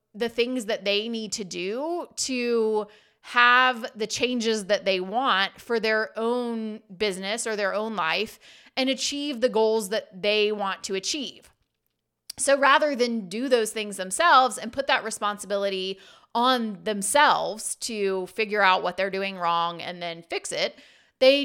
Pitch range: 205-270 Hz